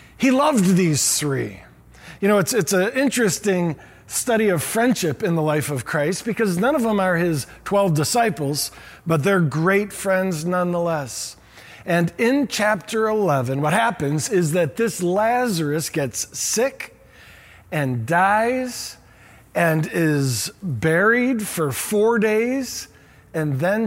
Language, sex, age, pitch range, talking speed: English, male, 50-69, 150-205 Hz, 135 wpm